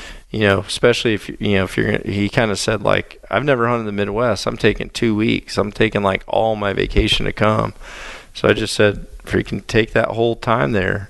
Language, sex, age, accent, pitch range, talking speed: English, male, 40-59, American, 105-125 Hz, 220 wpm